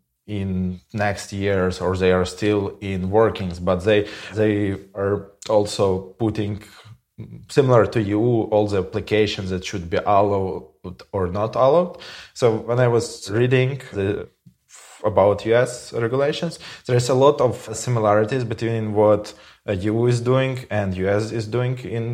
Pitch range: 100-115 Hz